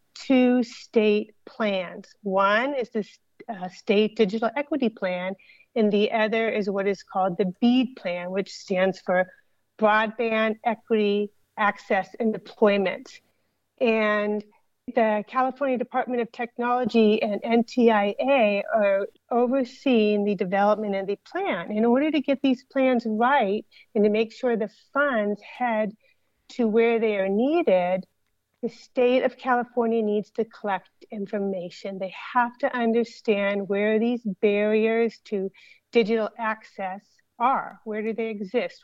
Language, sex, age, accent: English, female, 40-59, American